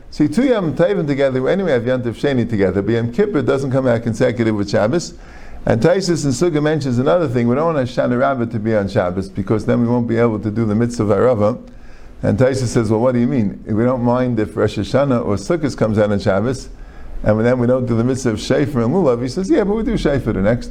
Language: English